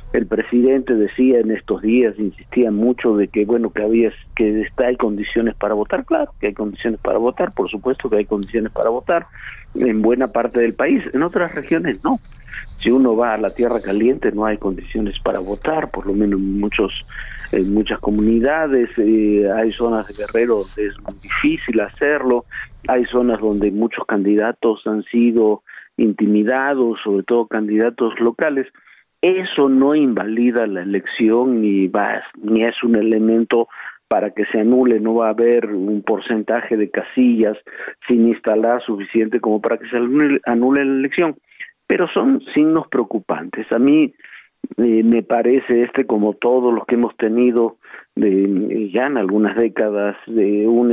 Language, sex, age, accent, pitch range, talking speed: Spanish, male, 50-69, Mexican, 105-125 Hz, 165 wpm